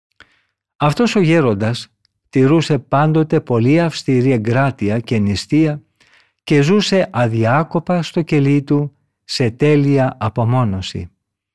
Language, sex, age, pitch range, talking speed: Greek, male, 50-69, 115-155 Hz, 100 wpm